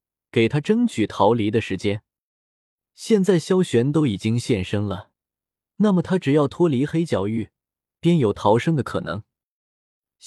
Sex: male